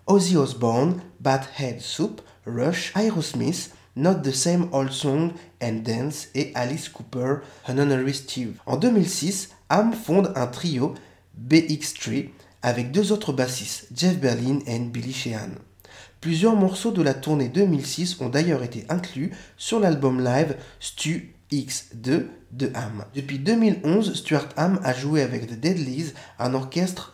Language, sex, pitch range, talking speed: French, male, 130-180 Hz, 140 wpm